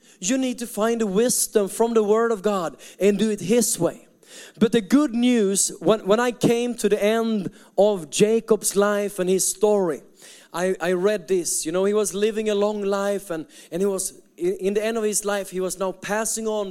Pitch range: 175-215 Hz